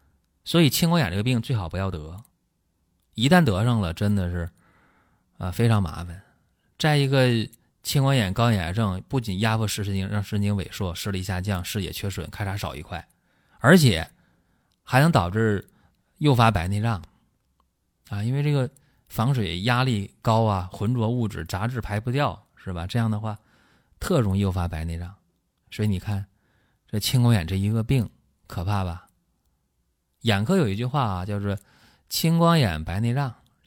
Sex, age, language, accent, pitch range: male, 20-39, Chinese, native, 90-125 Hz